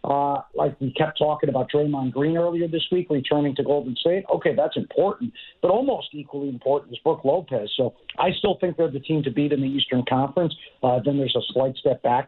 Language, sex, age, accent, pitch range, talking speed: English, male, 50-69, American, 130-155 Hz, 220 wpm